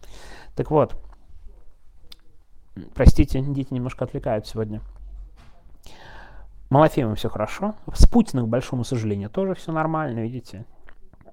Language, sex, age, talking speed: Russian, male, 30-49, 100 wpm